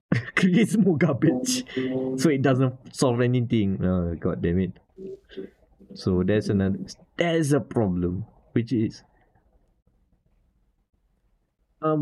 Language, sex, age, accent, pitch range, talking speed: English, male, 20-39, Malaysian, 100-130 Hz, 105 wpm